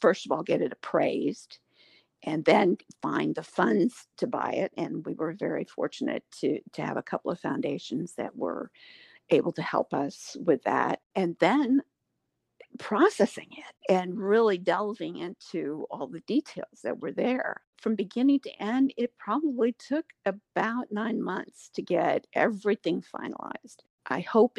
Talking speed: 155 wpm